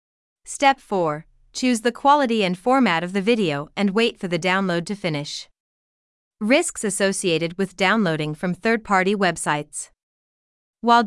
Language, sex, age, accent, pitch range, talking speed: English, female, 30-49, American, 170-230 Hz, 135 wpm